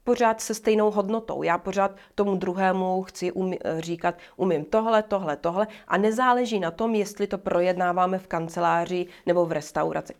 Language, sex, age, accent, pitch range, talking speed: Czech, female, 30-49, native, 160-185 Hz, 155 wpm